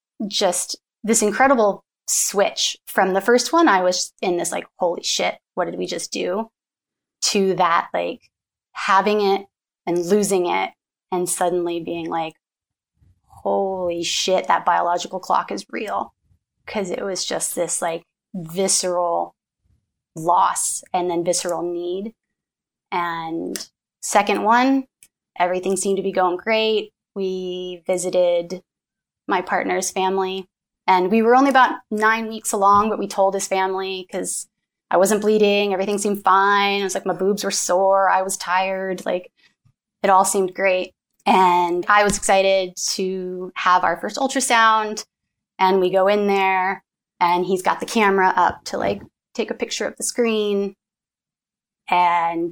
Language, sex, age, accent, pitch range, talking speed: English, female, 20-39, American, 180-205 Hz, 145 wpm